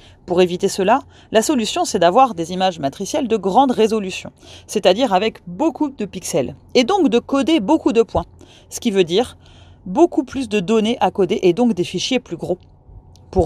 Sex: female